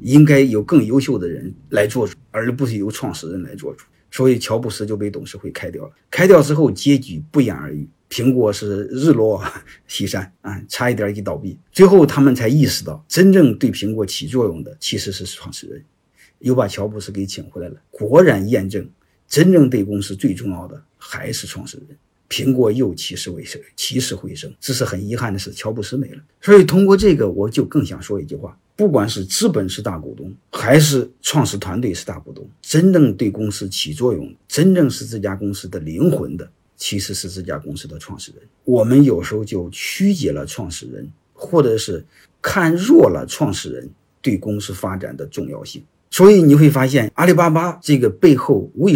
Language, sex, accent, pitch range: Chinese, male, native, 100-145 Hz